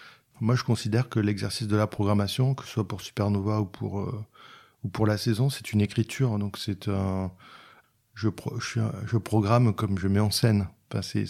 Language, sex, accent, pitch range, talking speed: French, male, French, 100-125 Hz, 195 wpm